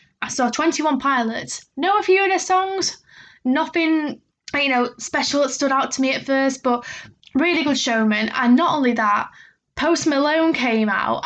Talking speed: 180 wpm